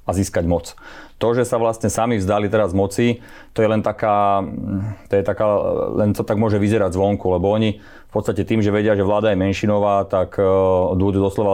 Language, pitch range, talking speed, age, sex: Slovak, 95-105 Hz, 200 wpm, 30-49, male